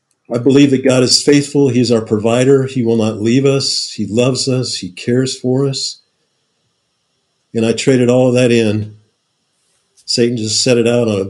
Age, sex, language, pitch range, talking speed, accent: 50-69, male, English, 110-130 Hz, 185 wpm, American